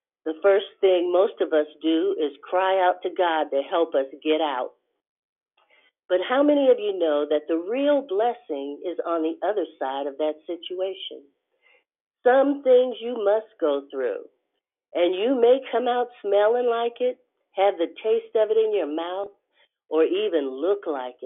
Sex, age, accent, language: female, 50-69, American, English